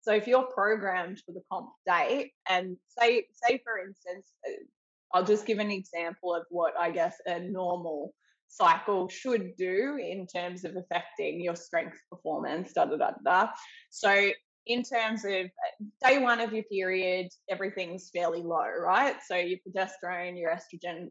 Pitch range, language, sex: 175-225 Hz, English, female